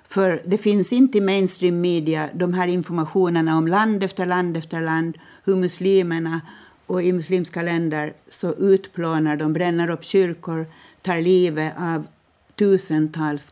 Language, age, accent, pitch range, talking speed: Swedish, 60-79, native, 150-180 Hz, 140 wpm